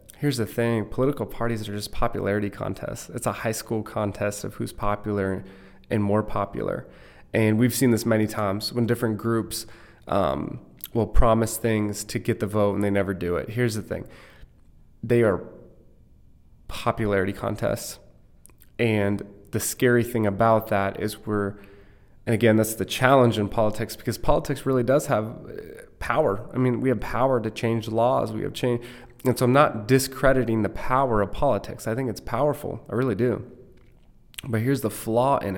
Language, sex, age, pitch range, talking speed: English, male, 20-39, 105-125 Hz, 170 wpm